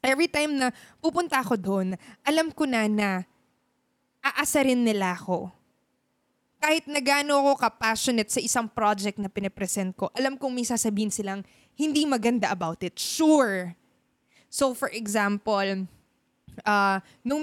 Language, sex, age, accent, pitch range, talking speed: Filipino, female, 20-39, native, 210-285 Hz, 125 wpm